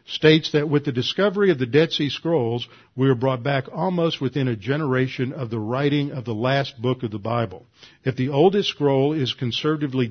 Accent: American